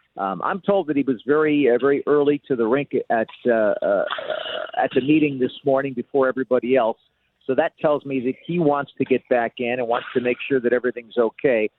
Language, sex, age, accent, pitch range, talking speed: English, male, 50-69, American, 120-150 Hz, 220 wpm